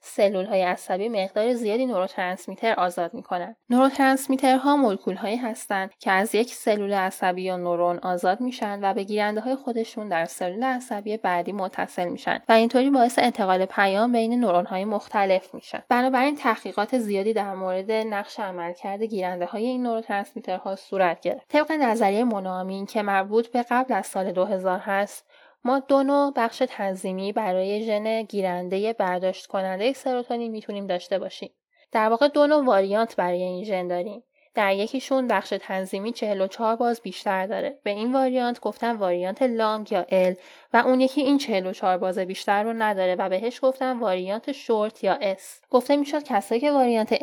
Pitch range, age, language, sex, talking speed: 190-245 Hz, 10-29, Persian, female, 165 wpm